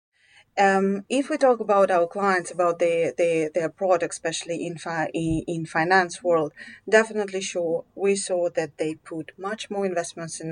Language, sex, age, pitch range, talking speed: French, female, 30-49, 170-210 Hz, 155 wpm